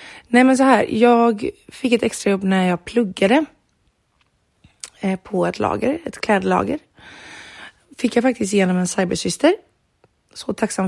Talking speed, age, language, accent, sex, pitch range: 140 wpm, 30-49, Swedish, native, female, 200-235 Hz